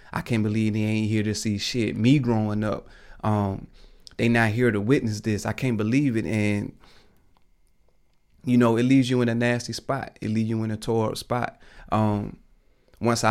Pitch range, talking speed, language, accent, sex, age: 100-115 Hz, 200 wpm, English, American, male, 30-49